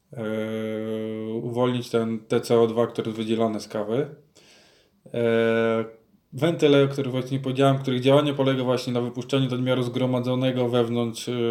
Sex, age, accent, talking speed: male, 20-39, native, 130 wpm